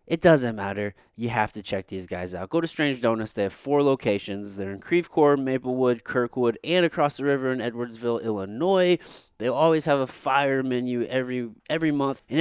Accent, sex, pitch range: American, male, 110-155 Hz